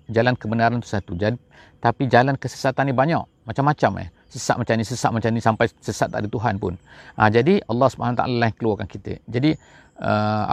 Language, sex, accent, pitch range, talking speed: English, male, Indonesian, 110-135 Hz, 185 wpm